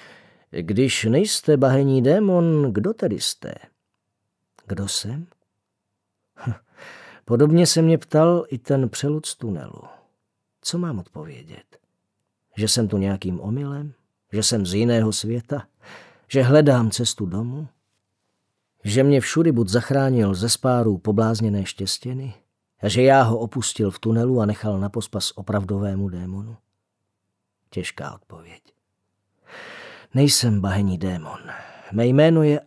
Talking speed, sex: 120 wpm, male